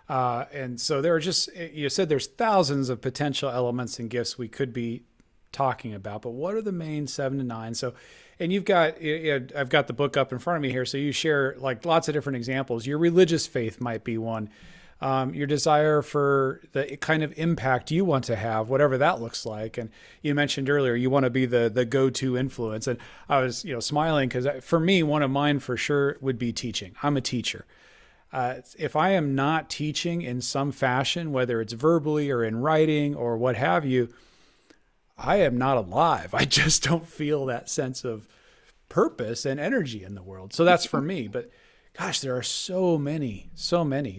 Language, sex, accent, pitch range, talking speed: English, male, American, 125-155 Hz, 205 wpm